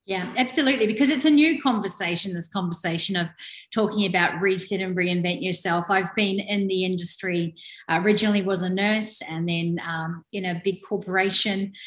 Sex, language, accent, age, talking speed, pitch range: female, English, Australian, 40-59, 165 wpm, 185-215 Hz